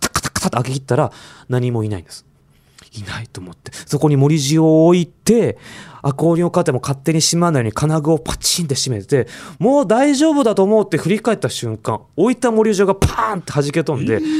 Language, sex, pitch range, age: Japanese, male, 125-205 Hz, 20-39